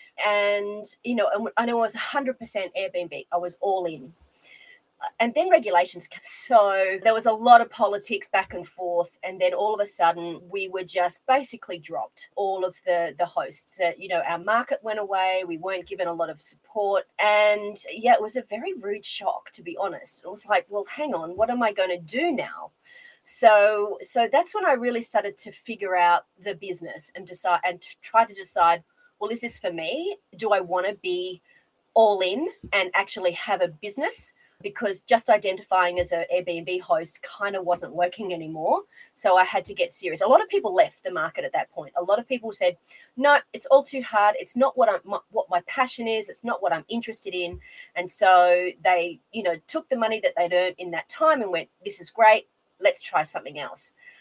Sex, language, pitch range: female, English, 180-245 Hz